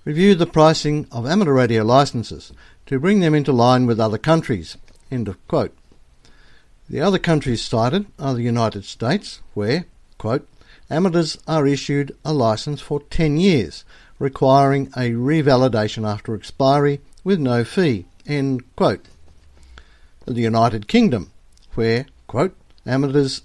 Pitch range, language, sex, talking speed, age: 115-150 Hz, English, male, 130 wpm, 60-79